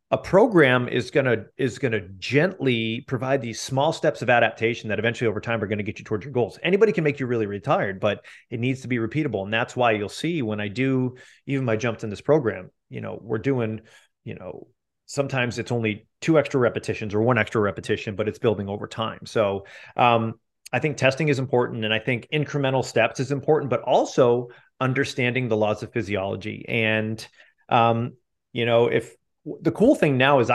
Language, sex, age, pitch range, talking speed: English, male, 30-49, 110-140 Hz, 205 wpm